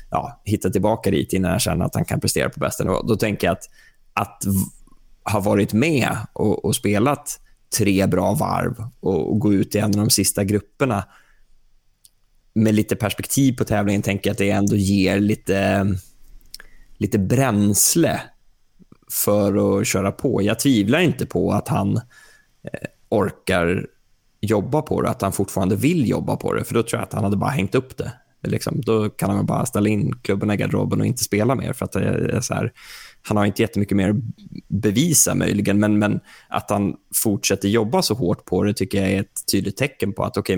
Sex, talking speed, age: male, 190 wpm, 20-39